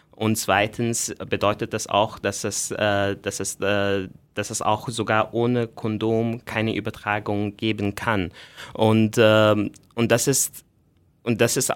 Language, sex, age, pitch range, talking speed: German, male, 20-39, 100-115 Hz, 100 wpm